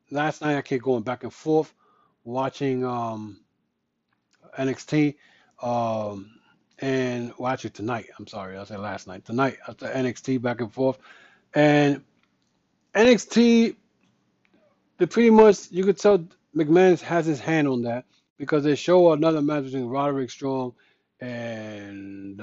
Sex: male